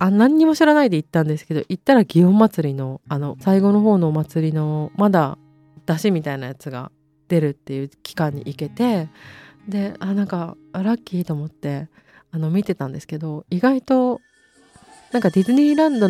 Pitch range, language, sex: 150-195 Hz, Japanese, female